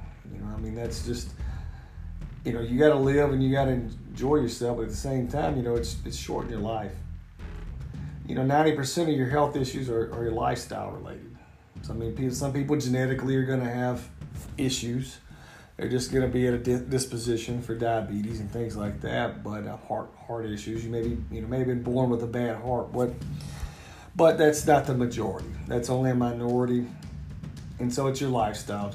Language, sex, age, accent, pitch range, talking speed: English, male, 40-59, American, 110-135 Hz, 210 wpm